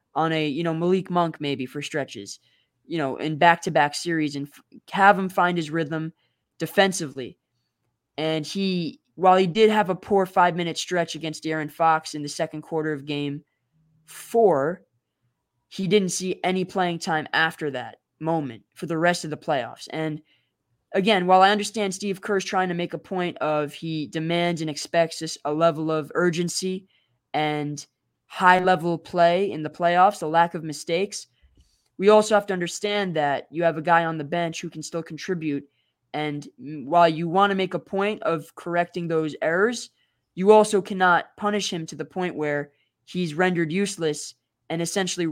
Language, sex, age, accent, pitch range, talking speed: English, female, 20-39, American, 150-185 Hz, 180 wpm